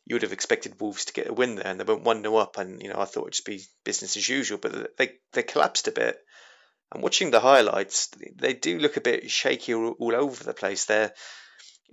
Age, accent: 30-49, British